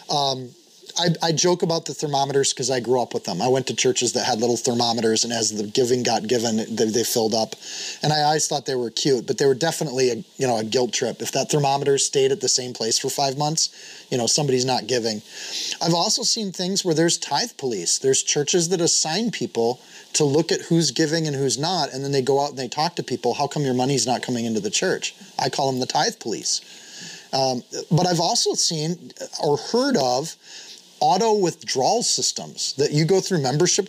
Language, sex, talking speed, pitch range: English, male, 225 wpm, 130-185 Hz